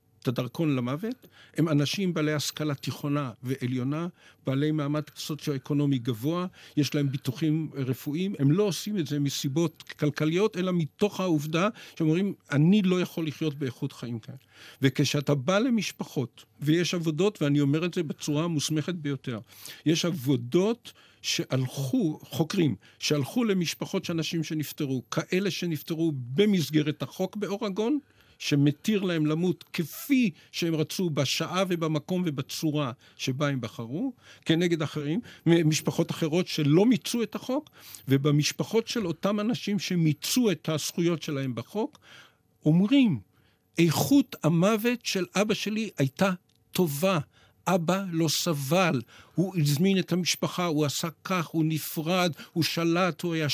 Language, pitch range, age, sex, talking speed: Hebrew, 145-185 Hz, 50-69, male, 125 wpm